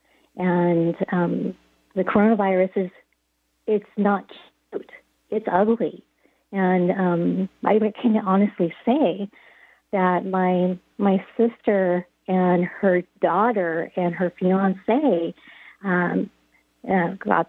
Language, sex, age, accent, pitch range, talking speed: English, female, 40-59, American, 180-220 Hz, 95 wpm